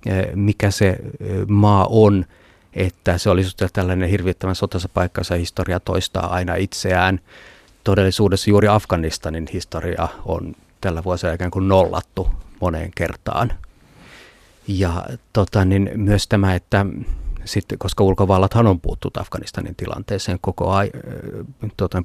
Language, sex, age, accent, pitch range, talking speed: Finnish, male, 30-49, native, 90-110 Hz, 115 wpm